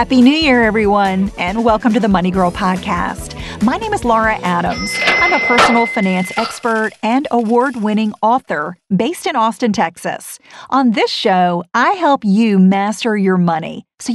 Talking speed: 160 wpm